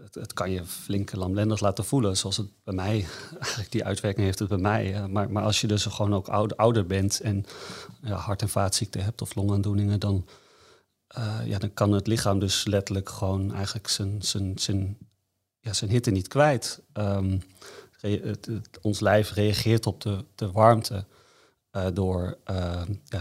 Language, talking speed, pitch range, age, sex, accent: Dutch, 170 wpm, 100-110 Hz, 30-49, male, Dutch